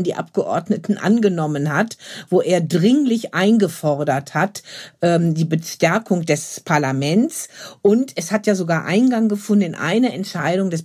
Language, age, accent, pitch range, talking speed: German, 50-69, German, 175-220 Hz, 135 wpm